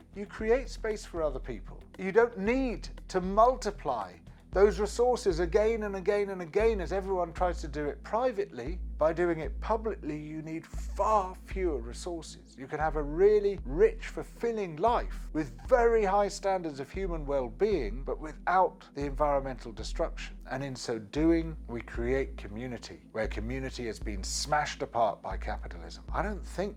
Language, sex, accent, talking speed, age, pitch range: English, male, British, 160 wpm, 40-59, 150-210 Hz